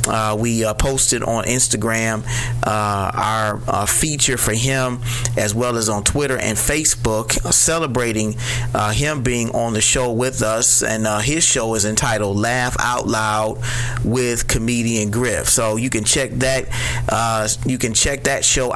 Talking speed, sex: 165 wpm, male